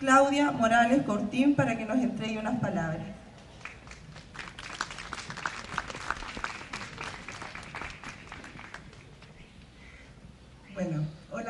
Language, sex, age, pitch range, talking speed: Spanish, female, 30-49, 200-235 Hz, 55 wpm